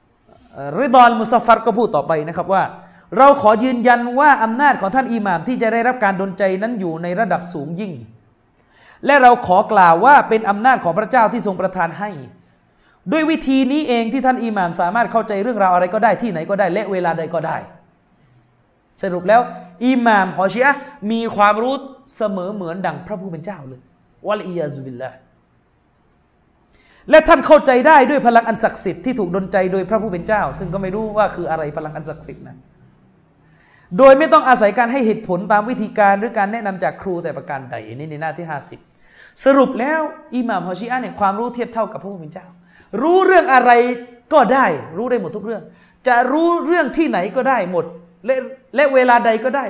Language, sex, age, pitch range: Thai, male, 30-49, 175-250 Hz